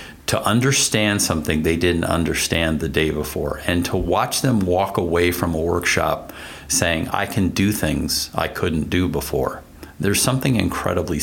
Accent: American